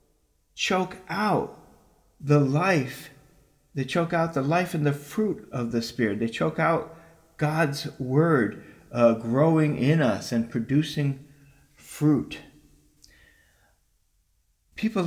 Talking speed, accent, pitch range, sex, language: 110 wpm, American, 115-155 Hz, male, English